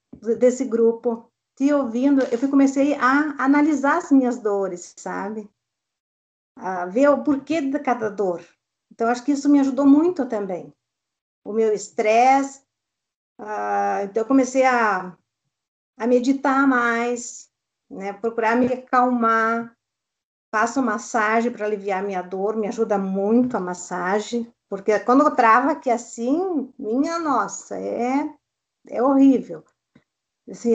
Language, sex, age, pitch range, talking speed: Portuguese, female, 50-69, 220-275 Hz, 125 wpm